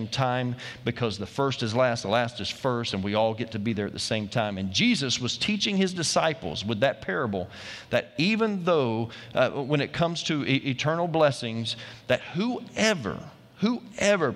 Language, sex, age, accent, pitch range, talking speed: English, male, 40-59, American, 115-150 Hz, 185 wpm